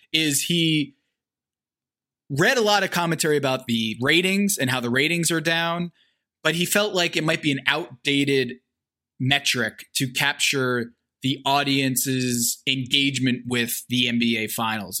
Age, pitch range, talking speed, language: 20-39, 130-170 Hz, 140 wpm, English